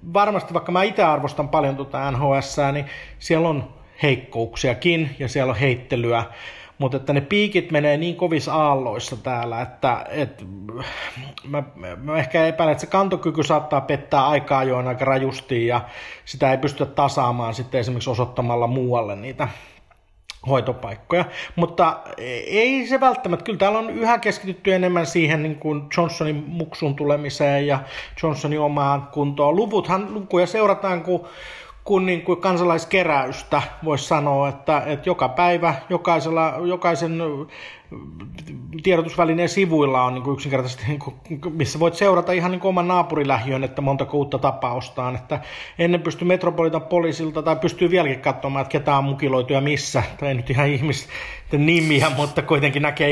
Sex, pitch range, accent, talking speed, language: male, 135-170 Hz, native, 145 wpm, Finnish